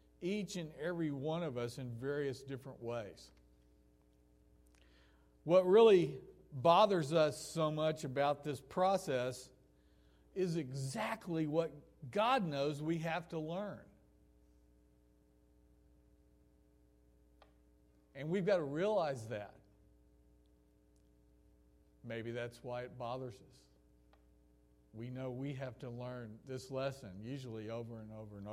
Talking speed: 110 wpm